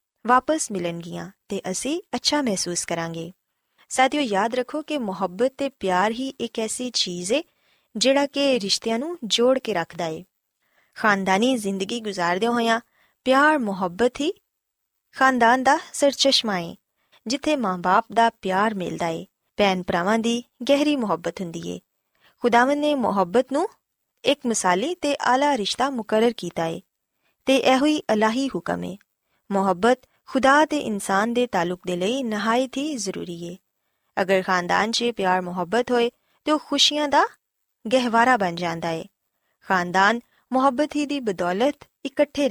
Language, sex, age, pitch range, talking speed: Punjabi, female, 20-39, 190-270 Hz, 140 wpm